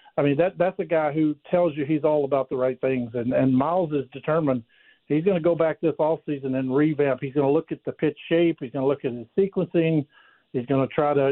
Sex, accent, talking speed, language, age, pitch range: male, American, 250 wpm, English, 50-69, 140-170 Hz